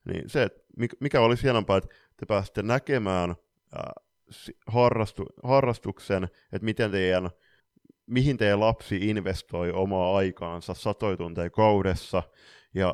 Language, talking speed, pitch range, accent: Finnish, 115 wpm, 90-110 Hz, native